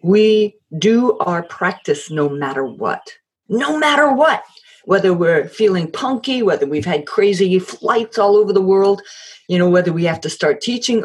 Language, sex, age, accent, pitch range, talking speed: English, female, 50-69, American, 175-225 Hz, 170 wpm